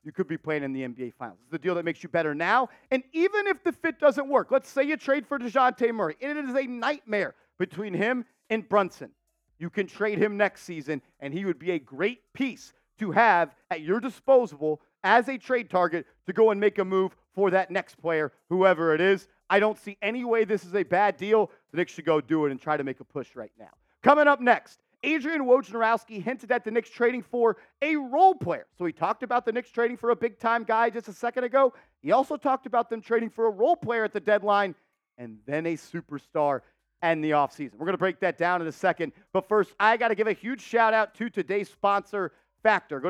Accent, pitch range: American, 170-235 Hz